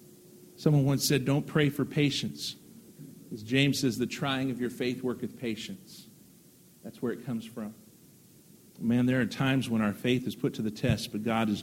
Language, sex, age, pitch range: English, male, 50-69, 130-165 Hz